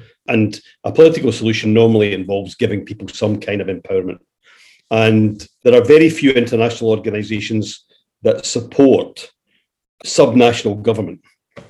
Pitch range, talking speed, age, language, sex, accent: 105-130 Hz, 120 wpm, 50-69, English, male, British